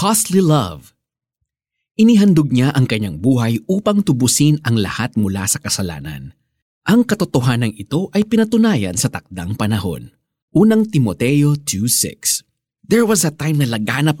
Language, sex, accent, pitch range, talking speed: Filipino, male, native, 115-165 Hz, 130 wpm